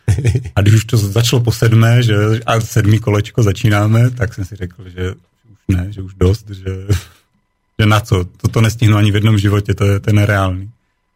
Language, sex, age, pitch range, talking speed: Slovak, male, 40-59, 95-105 Hz, 190 wpm